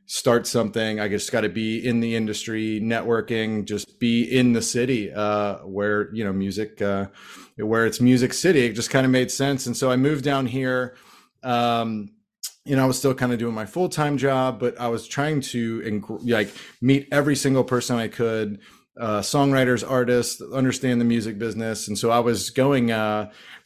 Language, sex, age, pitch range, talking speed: English, male, 30-49, 110-125 Hz, 200 wpm